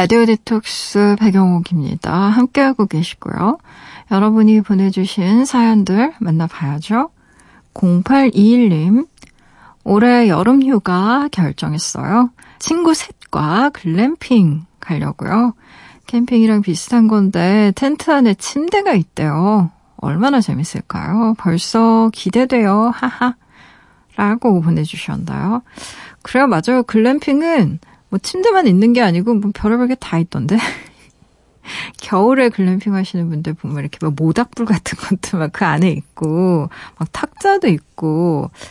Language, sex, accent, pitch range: Korean, female, native, 175-245 Hz